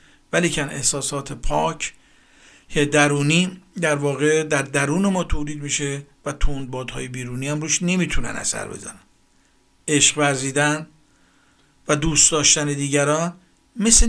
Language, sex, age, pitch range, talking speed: Persian, male, 50-69, 145-175 Hz, 115 wpm